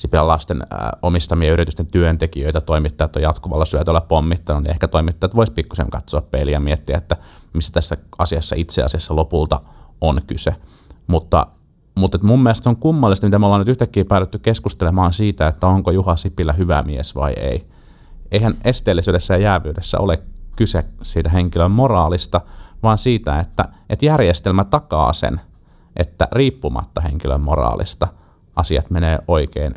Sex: male